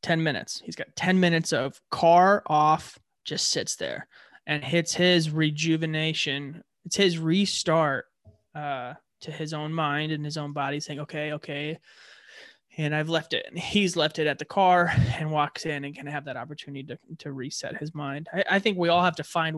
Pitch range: 150-175 Hz